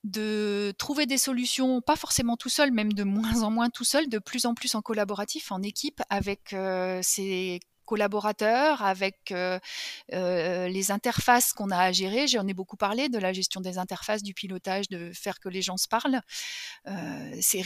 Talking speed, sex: 190 wpm, female